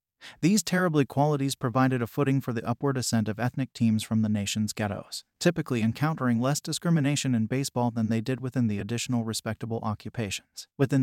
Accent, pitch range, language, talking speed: American, 115-140 Hz, English, 175 wpm